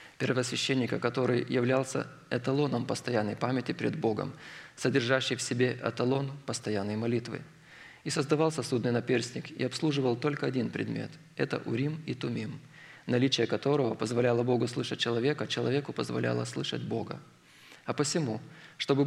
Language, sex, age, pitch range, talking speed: Russian, male, 20-39, 115-140 Hz, 130 wpm